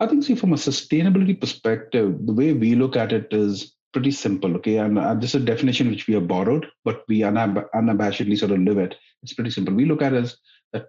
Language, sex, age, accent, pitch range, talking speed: English, male, 40-59, Indian, 95-115 Hz, 240 wpm